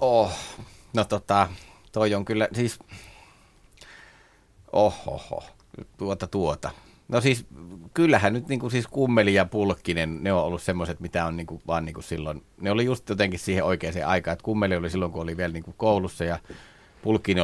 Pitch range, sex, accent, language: 85-110 Hz, male, native, Finnish